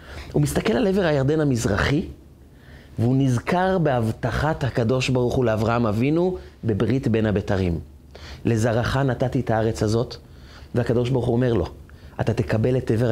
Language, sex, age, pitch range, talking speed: Hebrew, male, 30-49, 105-175 Hz, 140 wpm